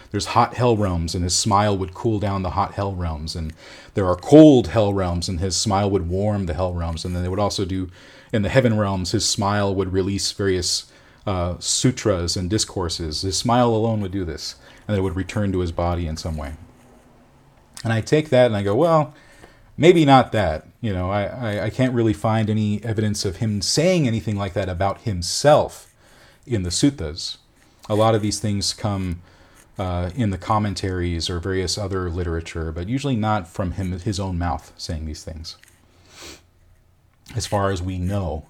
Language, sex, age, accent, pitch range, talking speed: English, male, 40-59, American, 90-115 Hz, 195 wpm